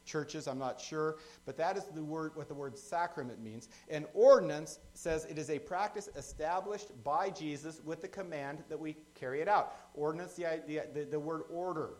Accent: American